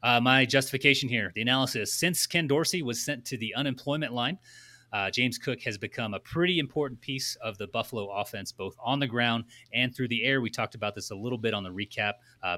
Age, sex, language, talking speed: 30-49, male, English, 225 wpm